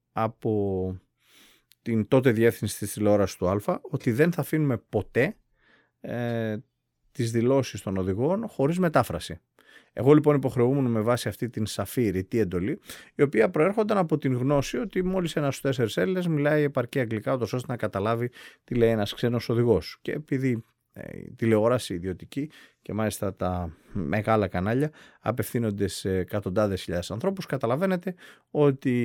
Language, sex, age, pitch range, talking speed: Greek, male, 30-49, 105-150 Hz, 145 wpm